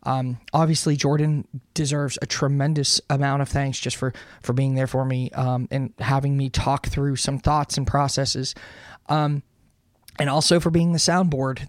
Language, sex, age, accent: English, male, 20-39, American